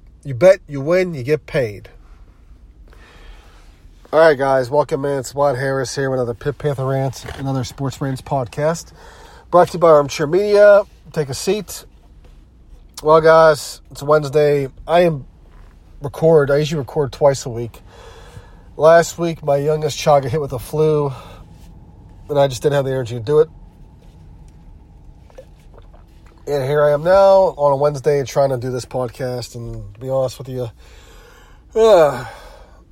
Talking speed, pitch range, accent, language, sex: 155 wpm, 100-150 Hz, American, English, male